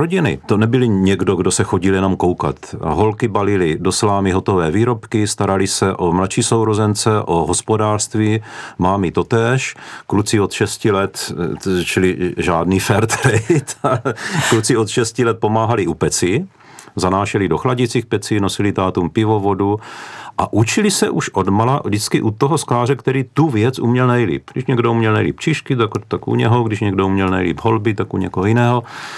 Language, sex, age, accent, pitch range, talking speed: Czech, male, 40-59, native, 95-115 Hz, 160 wpm